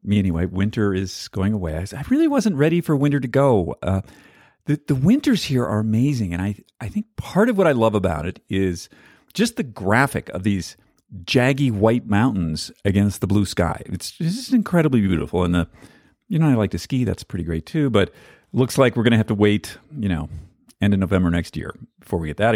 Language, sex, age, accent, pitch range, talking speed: English, male, 40-59, American, 95-135 Hz, 220 wpm